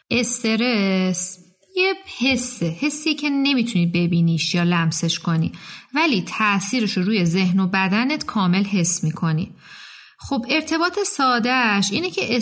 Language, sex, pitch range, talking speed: Persian, female, 185-245 Hz, 120 wpm